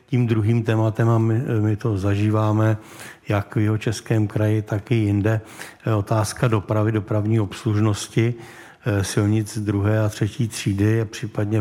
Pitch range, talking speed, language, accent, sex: 105-115 Hz, 135 wpm, Czech, native, male